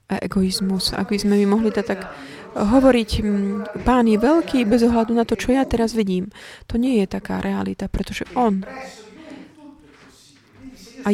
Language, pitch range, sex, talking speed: Slovak, 190-235 Hz, female, 145 wpm